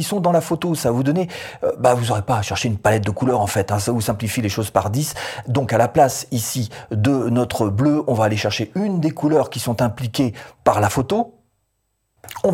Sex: male